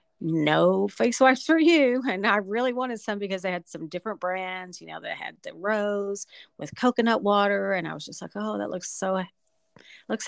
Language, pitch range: English, 165-200 Hz